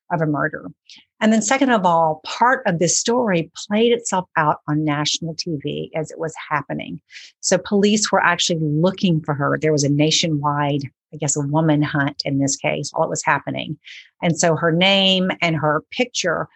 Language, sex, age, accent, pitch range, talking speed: English, female, 50-69, American, 150-185 Hz, 190 wpm